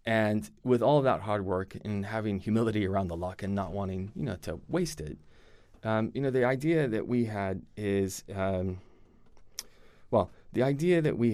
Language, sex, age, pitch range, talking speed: English, male, 20-39, 95-115 Hz, 195 wpm